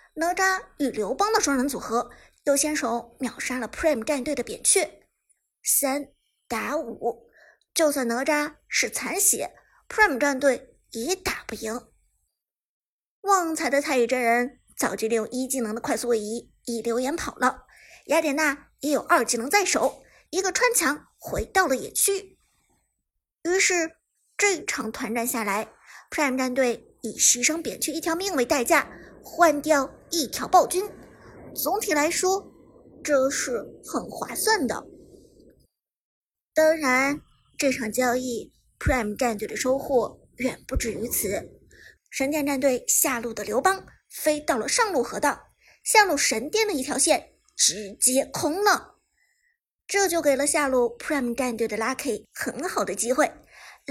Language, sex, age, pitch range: Chinese, male, 50-69, 250-340 Hz